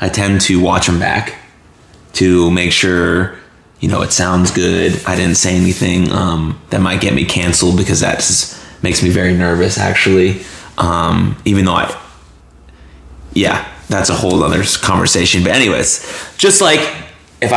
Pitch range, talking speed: 90-105 Hz, 155 wpm